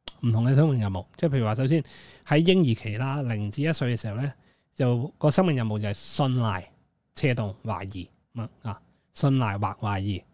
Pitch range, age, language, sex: 110-150 Hz, 20-39, Chinese, male